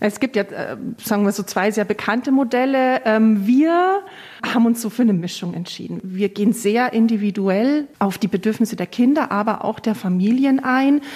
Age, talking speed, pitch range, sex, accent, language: 40-59, 170 wpm, 200-245 Hz, female, German, German